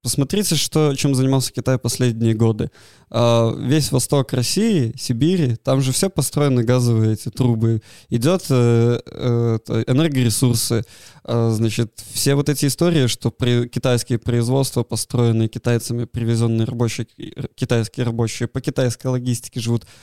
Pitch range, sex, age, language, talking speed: 120-145 Hz, male, 20-39, Russian, 115 wpm